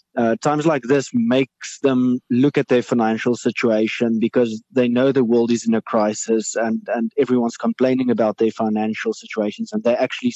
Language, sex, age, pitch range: English, male, 20-39, 120-140 Hz